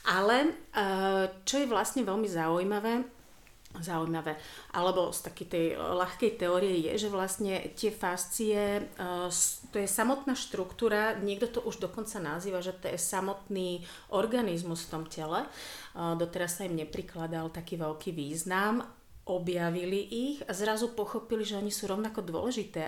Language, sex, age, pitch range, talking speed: Slovak, female, 30-49, 165-205 Hz, 135 wpm